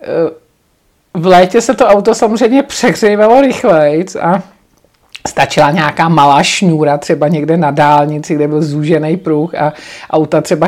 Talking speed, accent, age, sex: 135 wpm, native, 50-69, male